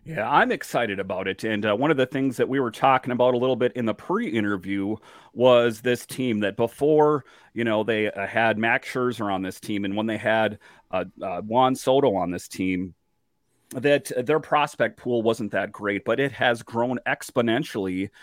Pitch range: 110-135 Hz